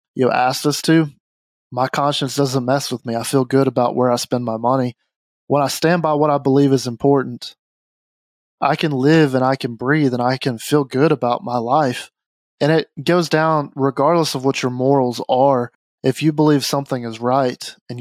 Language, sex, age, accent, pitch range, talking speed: English, male, 20-39, American, 120-140 Hz, 200 wpm